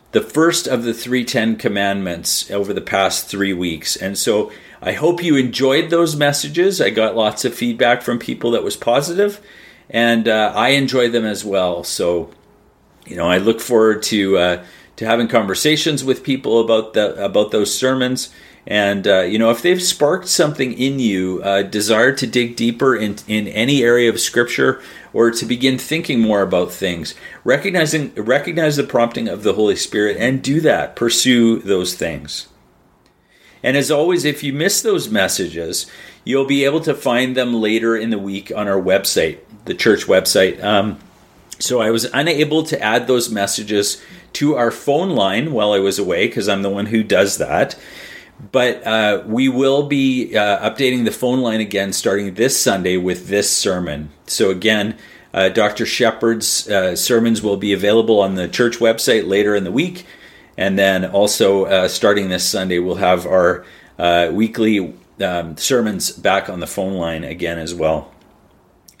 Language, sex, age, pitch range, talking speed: English, male, 40-59, 100-130 Hz, 175 wpm